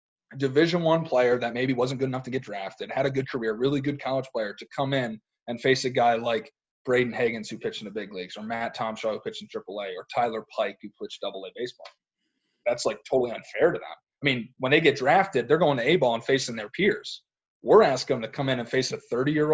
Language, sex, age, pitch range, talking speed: English, male, 20-39, 120-145 Hz, 255 wpm